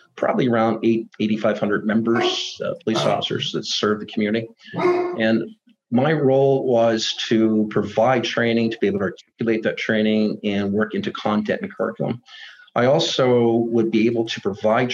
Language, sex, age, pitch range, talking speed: English, male, 40-59, 110-135 Hz, 155 wpm